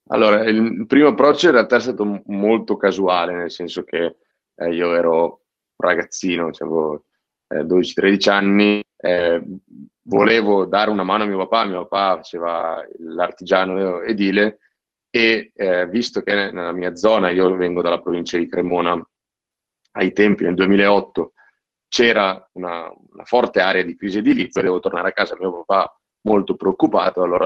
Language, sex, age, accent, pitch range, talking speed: Italian, male, 30-49, native, 90-105 Hz, 145 wpm